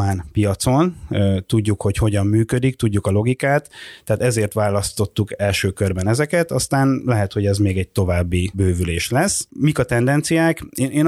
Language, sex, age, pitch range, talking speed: Hungarian, male, 30-49, 100-125 Hz, 145 wpm